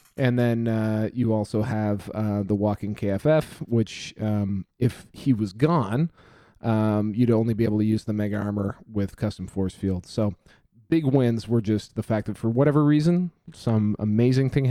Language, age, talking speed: English, 30-49, 180 wpm